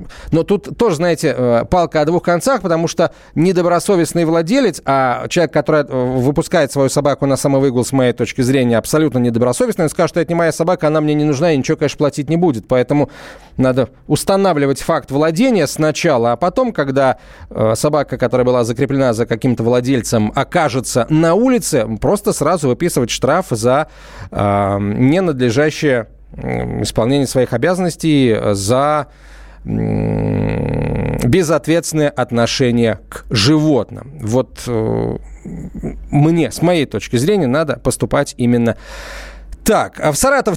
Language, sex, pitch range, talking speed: Russian, male, 130-180 Hz, 130 wpm